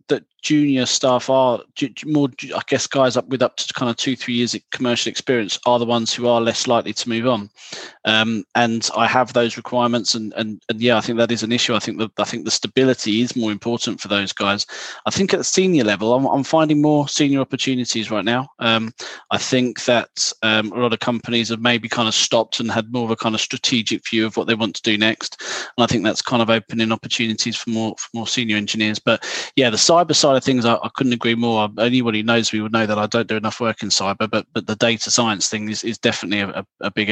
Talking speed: 250 wpm